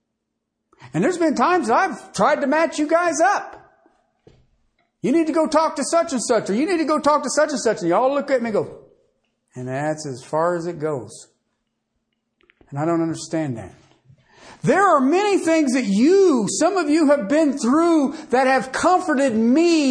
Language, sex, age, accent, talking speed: English, male, 50-69, American, 200 wpm